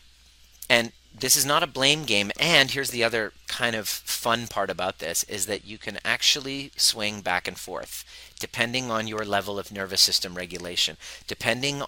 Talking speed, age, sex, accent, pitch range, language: 175 wpm, 30-49, male, American, 95-130 Hz, English